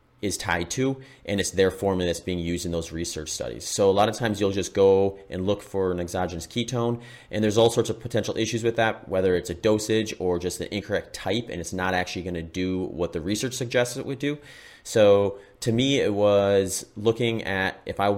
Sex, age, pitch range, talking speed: male, 30-49, 90-105 Hz, 230 wpm